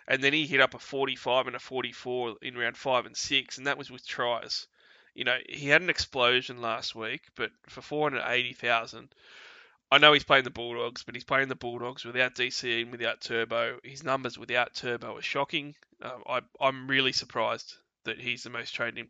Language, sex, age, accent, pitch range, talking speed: English, male, 20-39, Australian, 120-135 Hz, 195 wpm